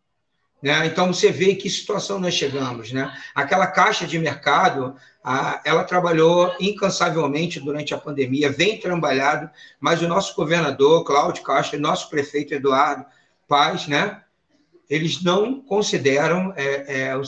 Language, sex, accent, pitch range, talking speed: Portuguese, male, Brazilian, 140-175 Hz, 140 wpm